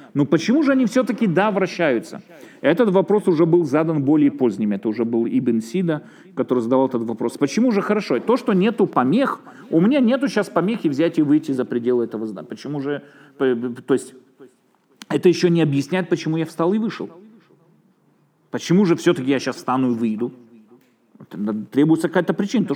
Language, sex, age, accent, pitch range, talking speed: Russian, male, 40-59, native, 130-195 Hz, 180 wpm